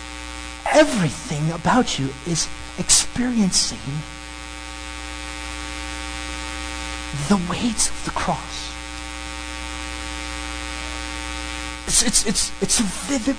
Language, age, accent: English, 40-59, American